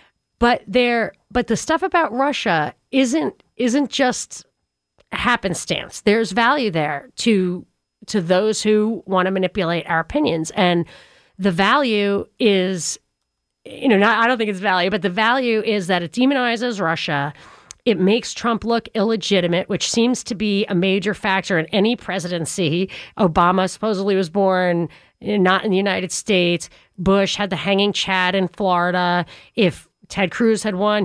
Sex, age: female, 30-49